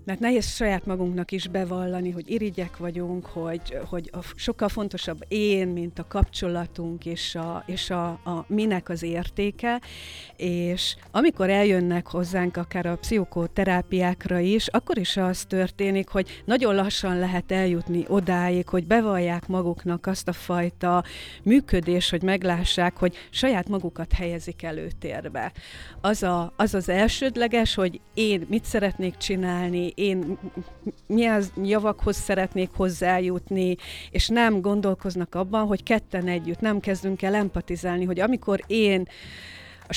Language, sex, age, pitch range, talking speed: Hungarian, female, 40-59, 175-205 Hz, 135 wpm